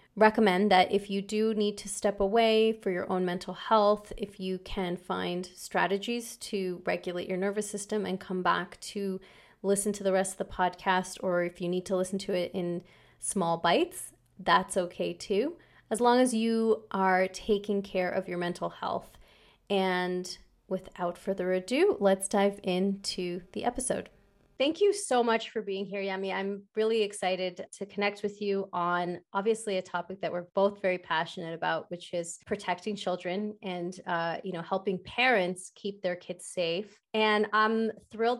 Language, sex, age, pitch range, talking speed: English, female, 30-49, 180-210 Hz, 175 wpm